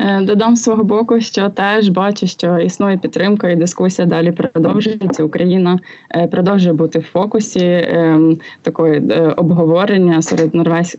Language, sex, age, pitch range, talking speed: Ukrainian, female, 20-39, 165-190 Hz, 130 wpm